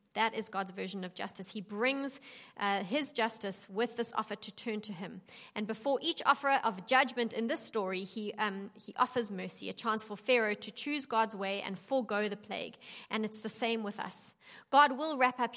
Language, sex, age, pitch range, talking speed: English, female, 30-49, 210-255 Hz, 210 wpm